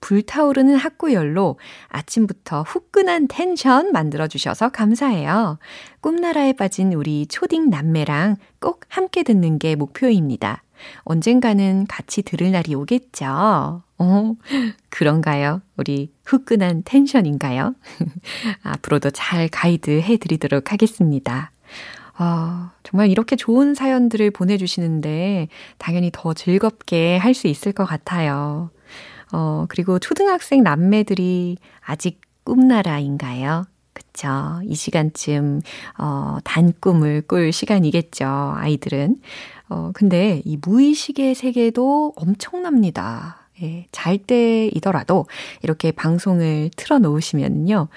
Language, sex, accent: Korean, female, native